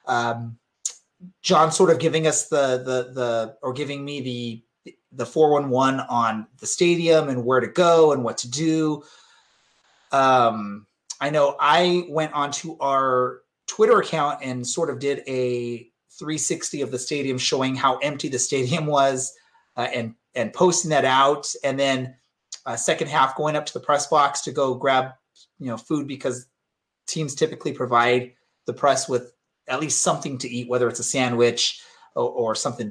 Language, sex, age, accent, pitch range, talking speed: English, male, 30-49, American, 125-150 Hz, 170 wpm